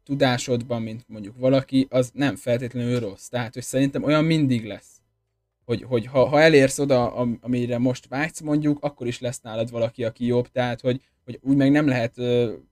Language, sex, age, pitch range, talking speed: Hungarian, male, 20-39, 110-130 Hz, 180 wpm